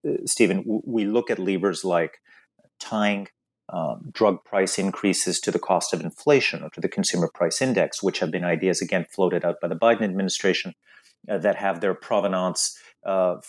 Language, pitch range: English, 90-115 Hz